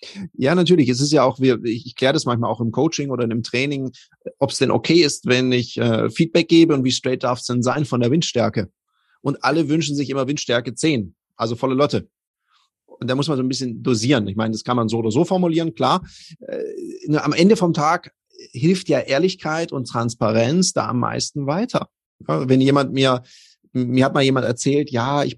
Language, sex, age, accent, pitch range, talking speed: German, male, 30-49, German, 120-150 Hz, 205 wpm